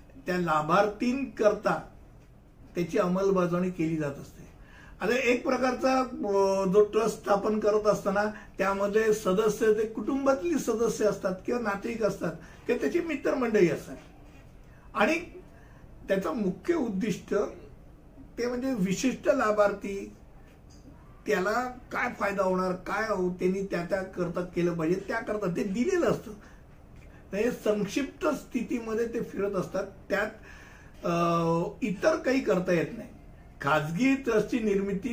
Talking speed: 50 wpm